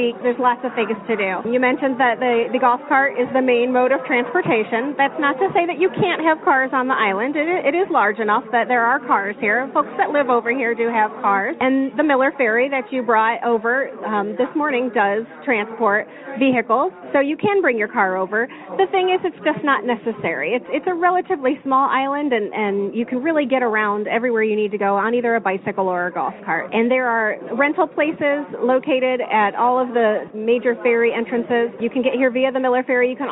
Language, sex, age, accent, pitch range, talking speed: English, female, 30-49, American, 225-285 Hz, 230 wpm